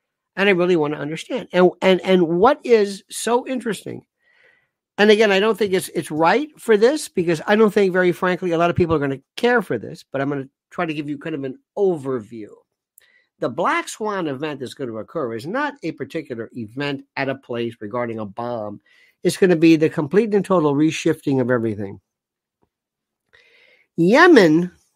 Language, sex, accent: English, male, American